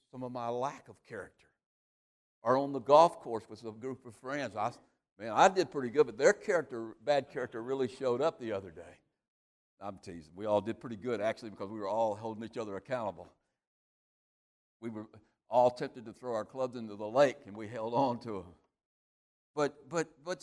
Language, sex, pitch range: English, male, 120-185 Hz